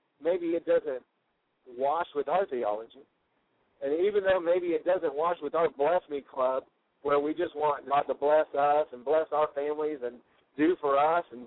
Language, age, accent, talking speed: English, 50-69, American, 190 wpm